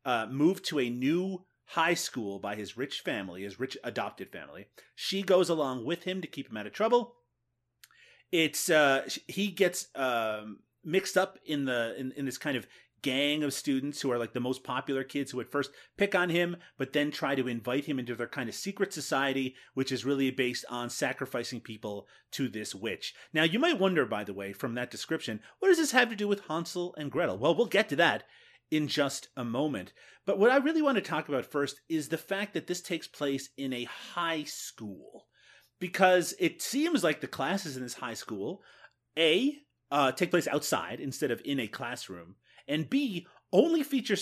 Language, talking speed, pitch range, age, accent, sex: English, 205 wpm, 130-185 Hz, 30-49, American, male